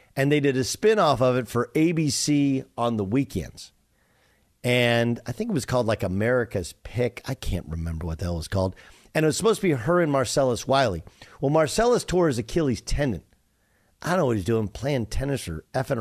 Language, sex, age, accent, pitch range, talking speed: English, male, 50-69, American, 115-155 Hz, 210 wpm